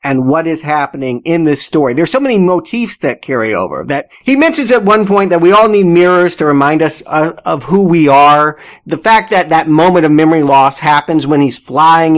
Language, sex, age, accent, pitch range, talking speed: English, male, 40-59, American, 145-200 Hz, 215 wpm